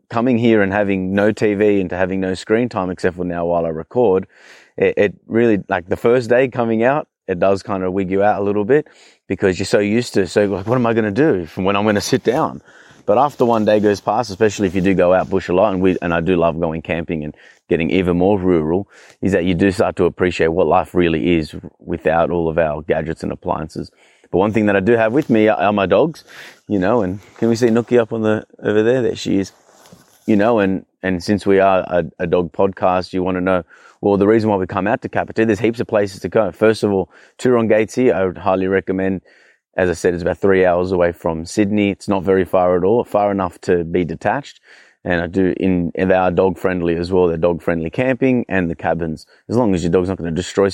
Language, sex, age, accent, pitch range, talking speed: English, male, 30-49, Australian, 90-105 Hz, 255 wpm